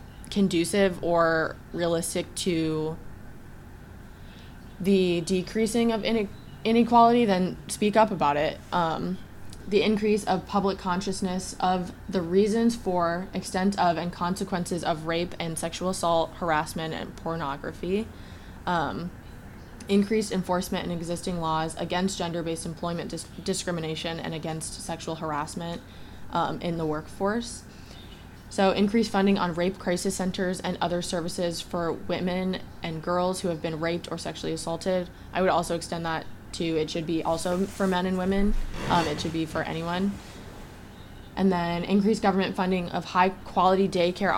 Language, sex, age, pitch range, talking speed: English, female, 20-39, 165-190 Hz, 145 wpm